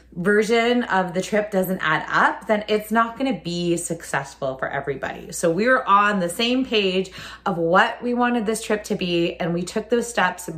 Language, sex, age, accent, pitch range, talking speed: English, female, 20-39, American, 185-245 Hz, 200 wpm